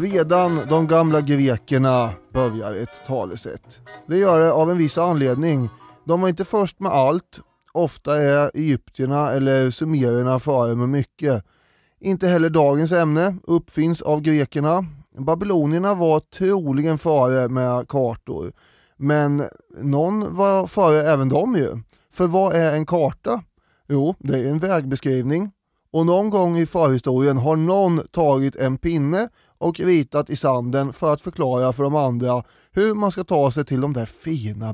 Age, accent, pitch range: 20-39, native, 130-170 Hz